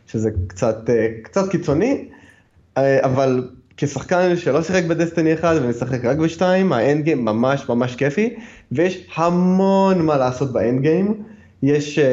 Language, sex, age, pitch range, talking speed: Hebrew, male, 20-39, 120-170 Hz, 115 wpm